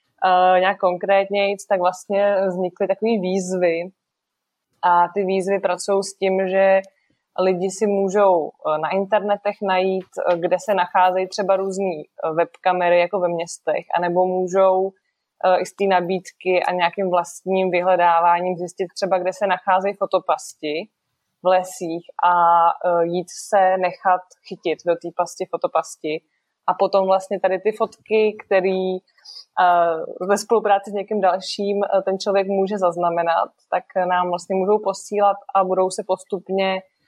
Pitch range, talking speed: 180-195 Hz, 135 wpm